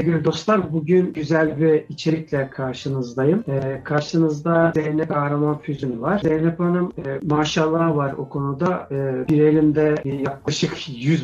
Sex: male